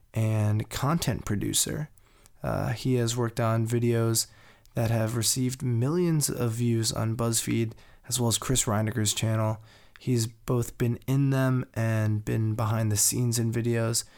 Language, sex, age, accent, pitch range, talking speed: English, male, 20-39, American, 110-130 Hz, 150 wpm